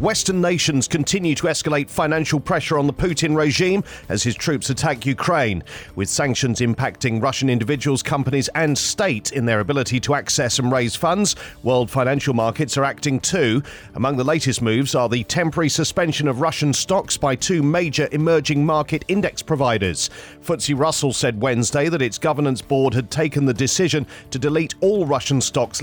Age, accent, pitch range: 40-59, British, 125-155 Hz